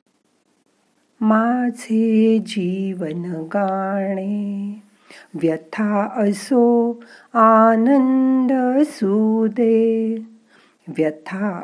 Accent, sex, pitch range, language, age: native, female, 185-240 Hz, Marathi, 50-69